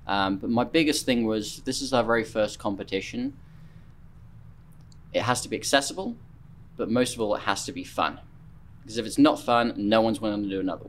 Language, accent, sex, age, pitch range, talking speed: English, British, male, 20-39, 100-125 Hz, 205 wpm